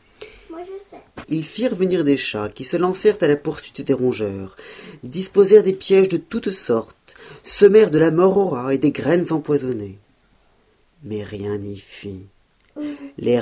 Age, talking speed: 40-59, 150 wpm